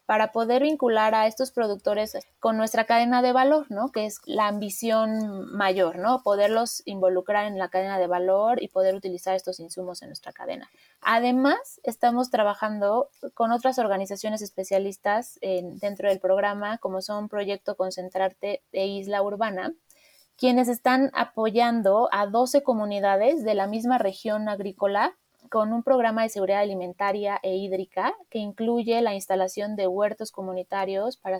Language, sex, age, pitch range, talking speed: Spanish, female, 20-39, 190-230 Hz, 150 wpm